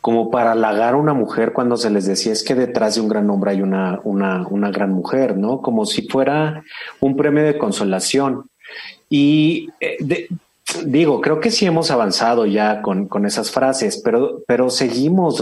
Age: 40-59